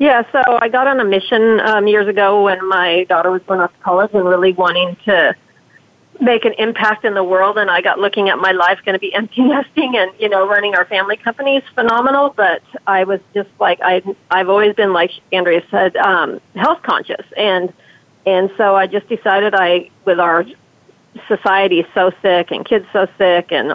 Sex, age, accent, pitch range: female, 40-59, American, 180-220 Hz